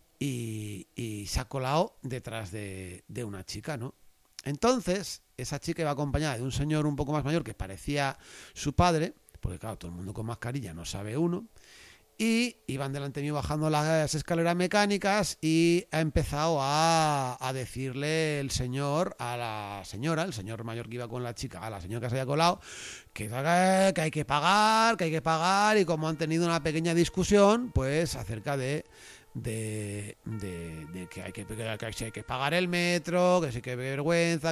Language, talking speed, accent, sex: Spanish, 185 wpm, Spanish, male